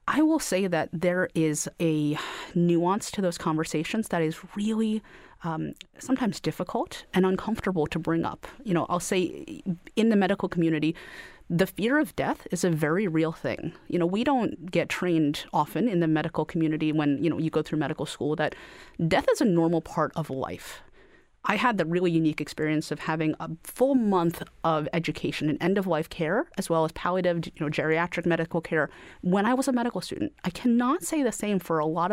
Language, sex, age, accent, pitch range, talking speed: English, female, 30-49, American, 160-210 Hz, 195 wpm